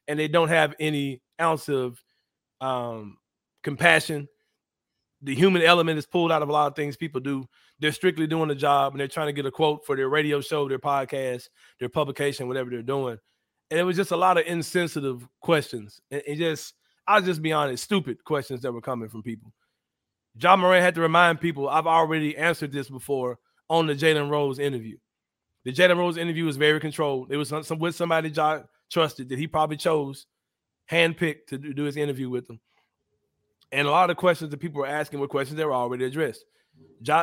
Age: 30-49